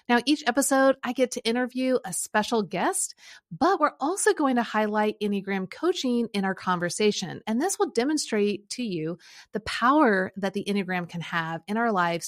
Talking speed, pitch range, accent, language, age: 180 wpm, 195-255 Hz, American, English, 30-49